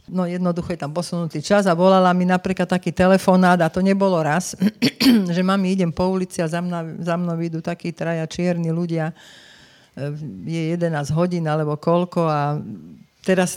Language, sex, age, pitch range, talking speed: Slovak, female, 50-69, 165-205 Hz, 165 wpm